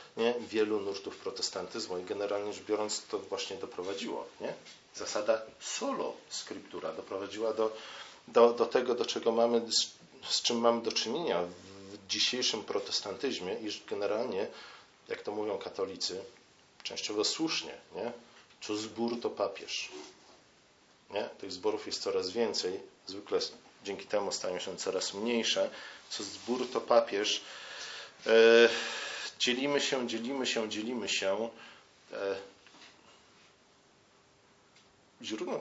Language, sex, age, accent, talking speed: Polish, male, 40-59, native, 110 wpm